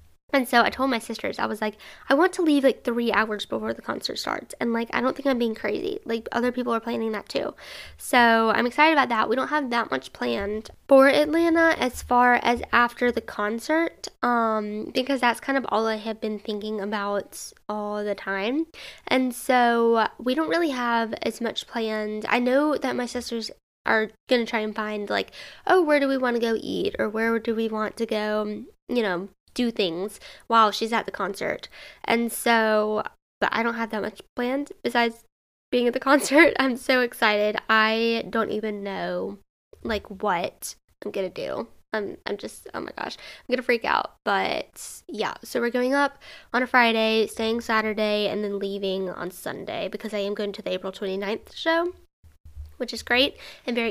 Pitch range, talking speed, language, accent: 215-250 Hz, 200 wpm, English, American